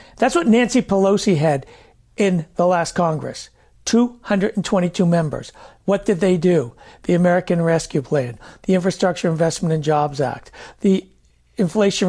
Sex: male